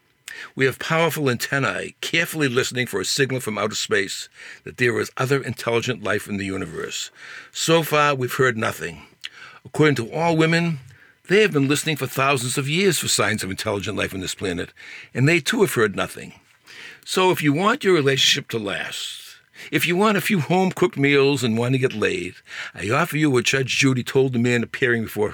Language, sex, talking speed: English, male, 195 wpm